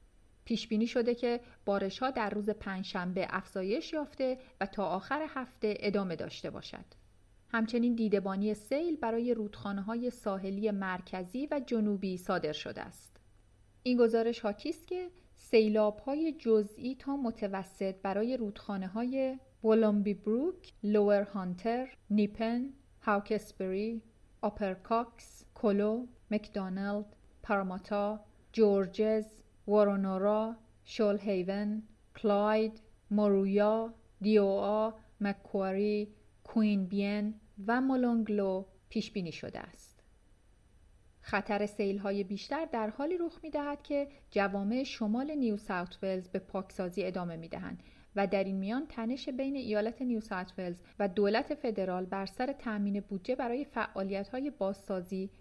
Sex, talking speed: female, 120 wpm